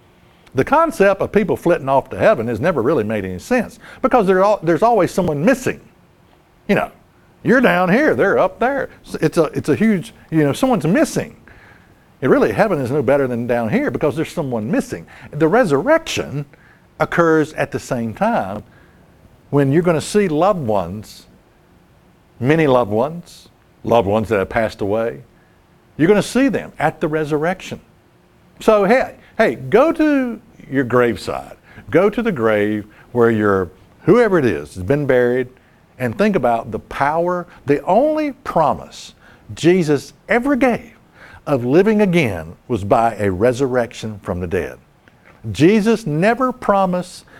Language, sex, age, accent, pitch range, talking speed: English, male, 60-79, American, 120-190 Hz, 155 wpm